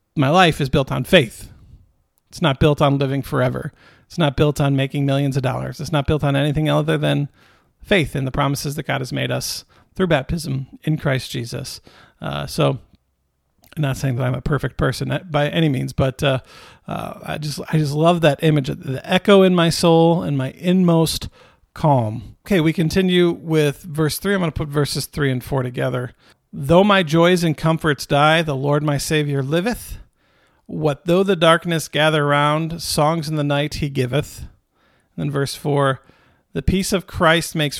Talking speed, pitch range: 190 wpm, 140-170 Hz